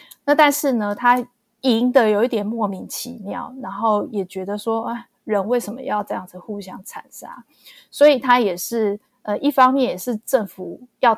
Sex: female